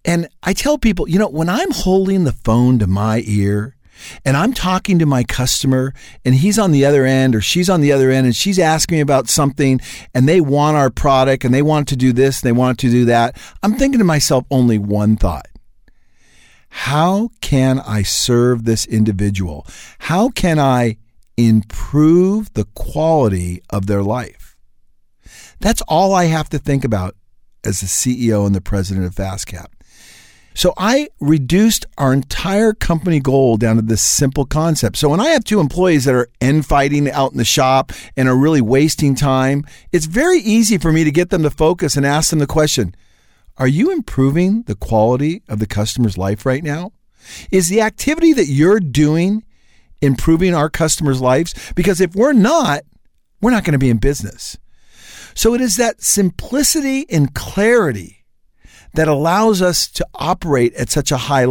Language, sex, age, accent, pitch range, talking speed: English, male, 50-69, American, 120-185 Hz, 180 wpm